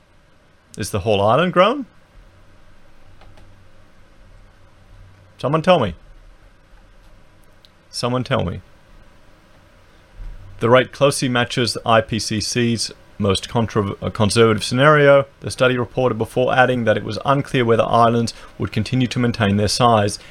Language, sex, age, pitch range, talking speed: English, male, 30-49, 100-125 Hz, 110 wpm